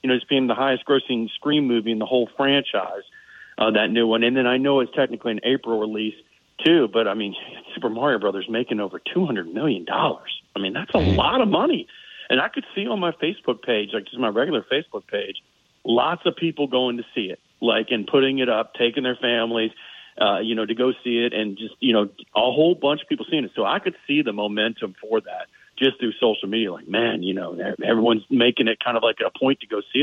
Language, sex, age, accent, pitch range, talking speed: English, male, 40-59, American, 115-140 Hz, 235 wpm